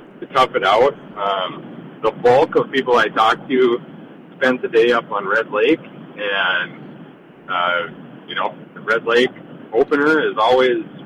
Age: 30-49